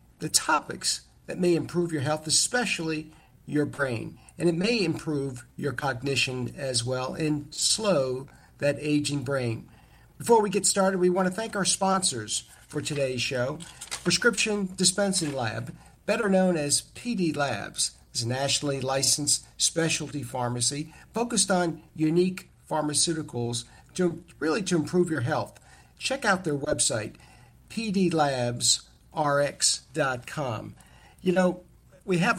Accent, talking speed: American, 130 wpm